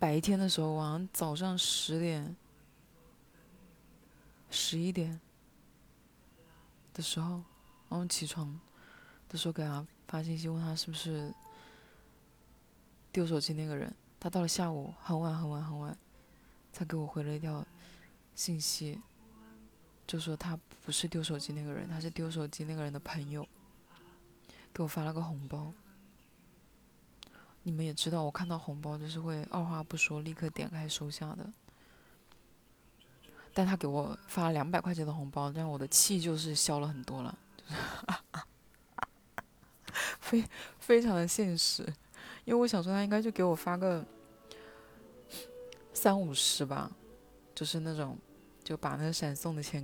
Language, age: Chinese, 20-39